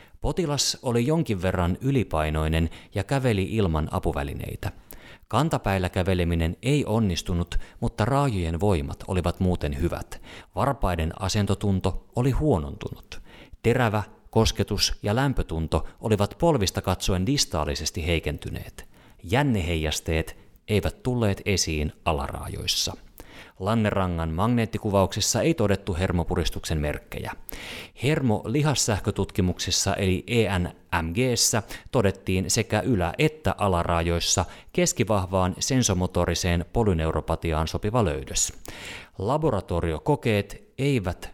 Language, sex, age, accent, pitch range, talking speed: Finnish, male, 30-49, native, 85-115 Hz, 85 wpm